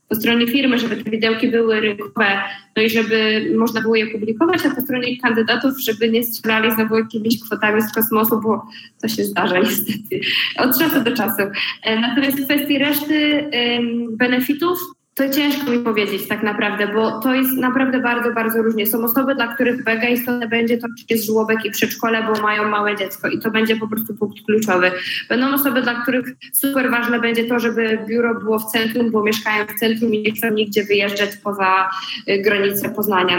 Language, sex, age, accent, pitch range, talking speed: Polish, female, 20-39, native, 220-265 Hz, 185 wpm